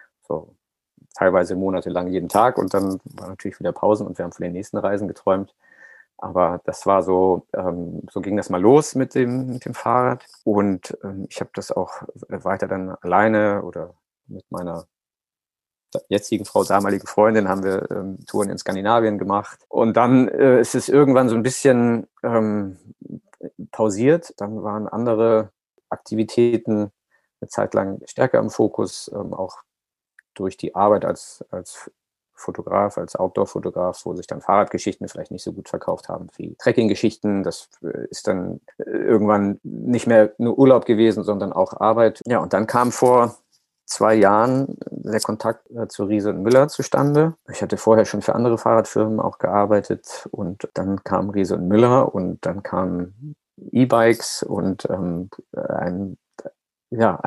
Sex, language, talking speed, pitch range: male, German, 150 wpm, 95-120 Hz